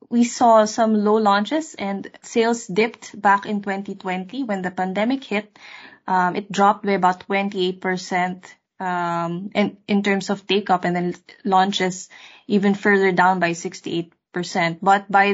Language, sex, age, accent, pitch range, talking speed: English, female, 20-39, Filipino, 185-215 Hz, 145 wpm